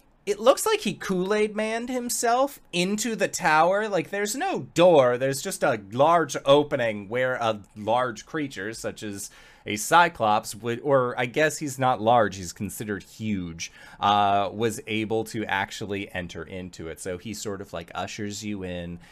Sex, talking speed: male, 165 wpm